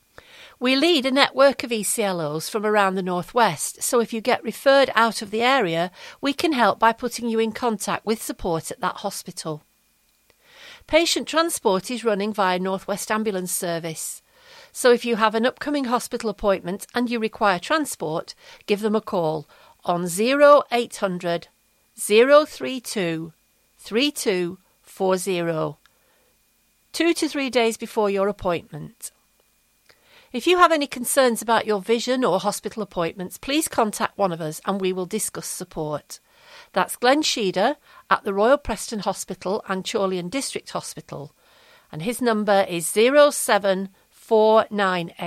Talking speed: 145 wpm